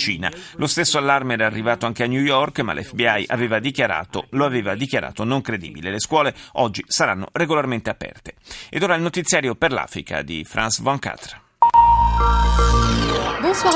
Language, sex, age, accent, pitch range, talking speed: Italian, male, 40-59, native, 120-170 Hz, 155 wpm